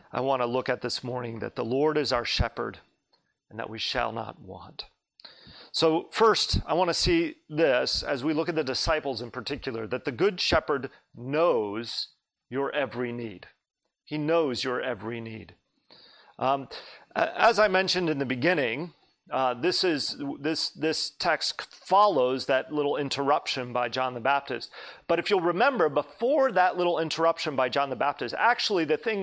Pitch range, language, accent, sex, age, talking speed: 130-180 Hz, English, American, male, 40-59, 170 wpm